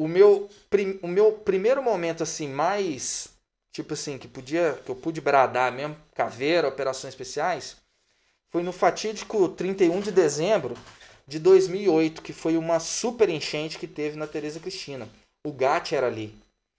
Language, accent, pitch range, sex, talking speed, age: Portuguese, Brazilian, 130-180 Hz, male, 155 wpm, 20-39